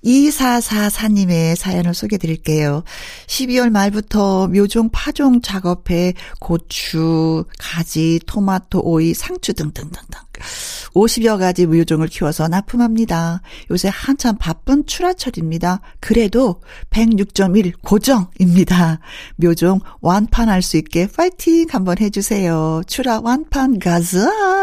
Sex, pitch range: female, 165-230 Hz